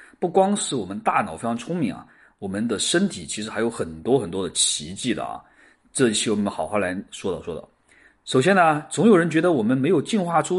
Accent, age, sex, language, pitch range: native, 30-49, male, Chinese, 130-215 Hz